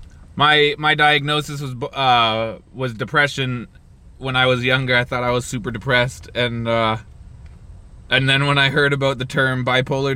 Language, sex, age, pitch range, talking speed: English, male, 20-39, 110-145 Hz, 165 wpm